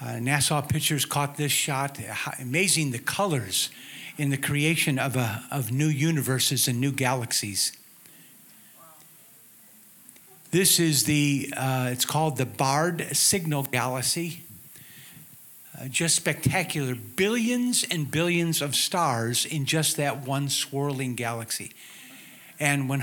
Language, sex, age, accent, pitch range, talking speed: English, male, 50-69, American, 130-160 Hz, 120 wpm